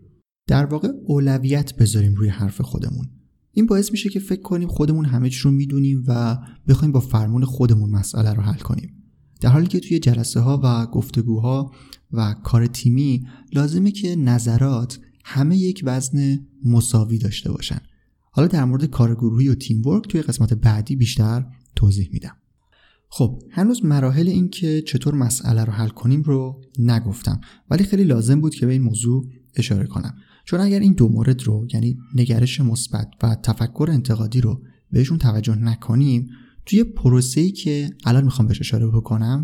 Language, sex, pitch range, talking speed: Persian, male, 115-145 Hz, 160 wpm